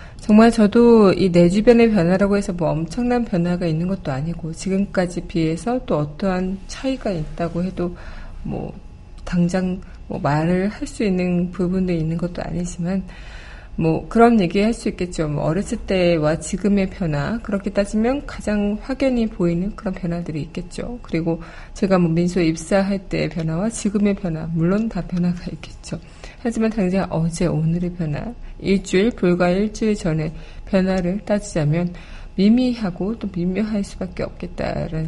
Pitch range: 170-210 Hz